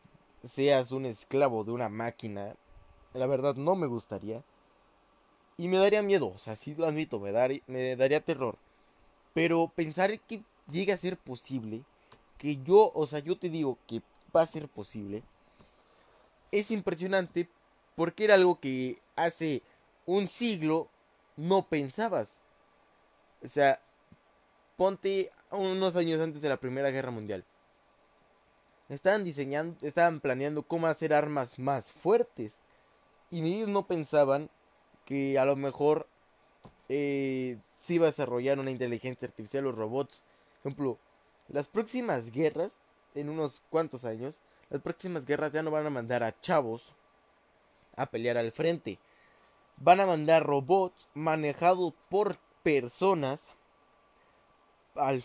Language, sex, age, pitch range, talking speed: Spanish, male, 20-39, 130-175 Hz, 135 wpm